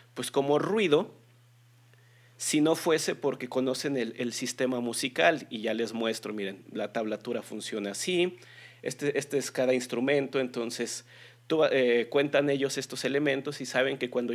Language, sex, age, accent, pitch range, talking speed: Spanish, male, 40-59, Mexican, 120-145 Hz, 155 wpm